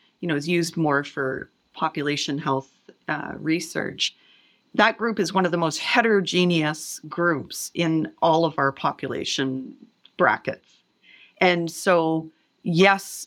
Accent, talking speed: American, 125 wpm